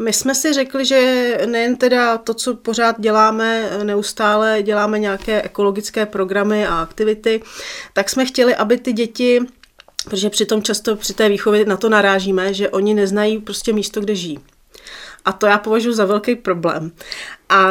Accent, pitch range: native, 205-230 Hz